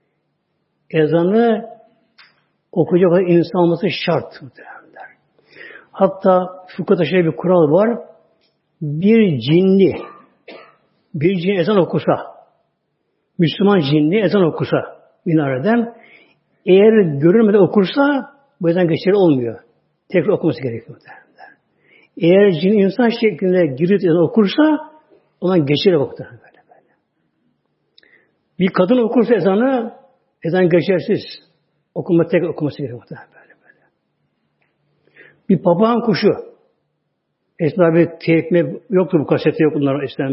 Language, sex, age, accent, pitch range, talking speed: Turkish, male, 60-79, native, 165-220 Hz, 90 wpm